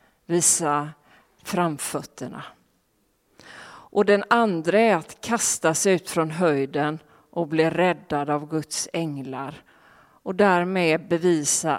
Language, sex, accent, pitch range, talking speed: Swedish, female, native, 155-195 Hz, 100 wpm